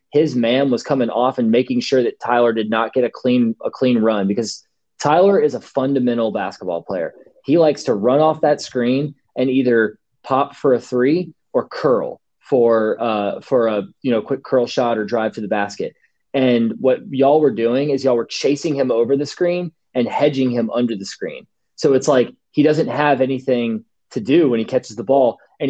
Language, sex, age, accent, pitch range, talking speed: English, male, 20-39, American, 115-140 Hz, 205 wpm